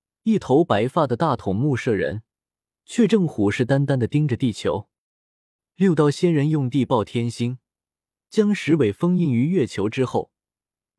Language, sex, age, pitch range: Chinese, male, 20-39, 110-165 Hz